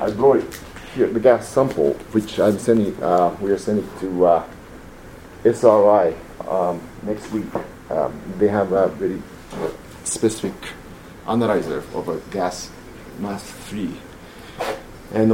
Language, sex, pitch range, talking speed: English, male, 100-110 Hz, 125 wpm